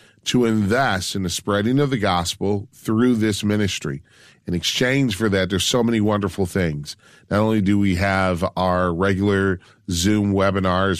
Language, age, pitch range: English, 40-59, 95-110 Hz